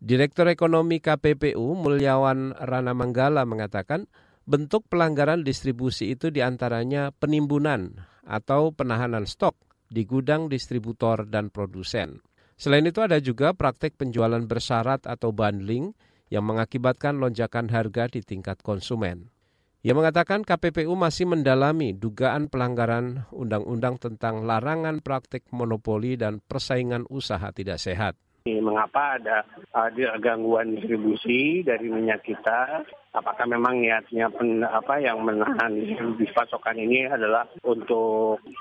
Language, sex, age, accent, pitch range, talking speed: Indonesian, male, 40-59, native, 110-145 Hz, 110 wpm